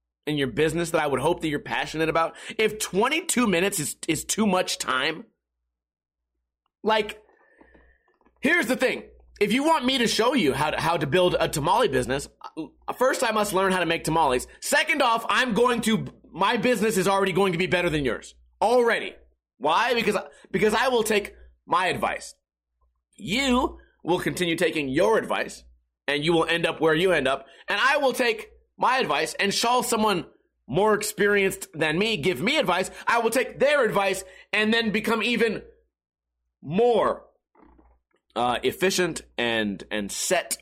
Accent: American